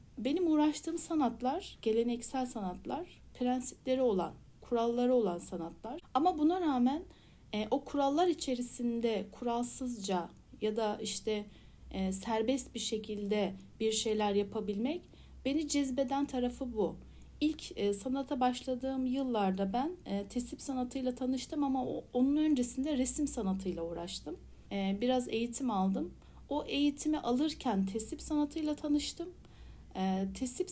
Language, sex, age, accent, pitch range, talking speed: Turkish, female, 60-79, native, 205-275 Hz, 105 wpm